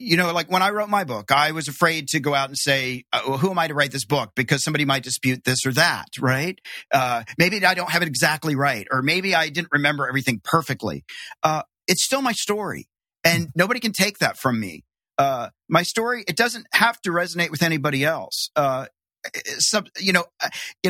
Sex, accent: male, American